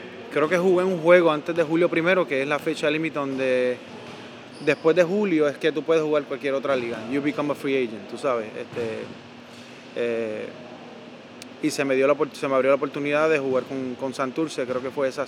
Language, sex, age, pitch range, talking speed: Spanish, male, 20-39, 130-150 Hz, 210 wpm